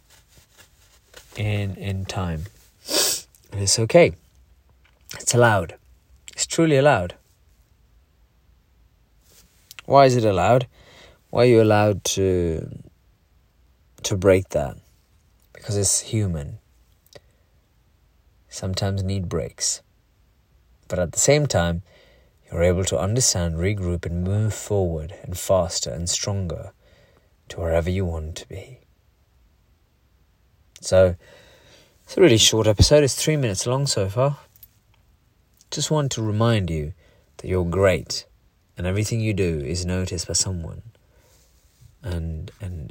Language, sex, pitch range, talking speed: English, male, 85-110 Hz, 115 wpm